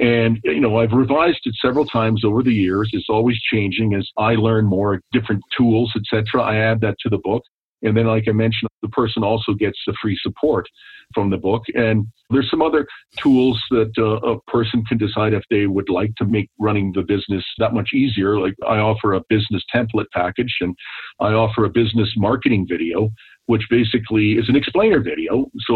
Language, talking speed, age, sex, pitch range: English, 205 wpm, 50-69, male, 105-125 Hz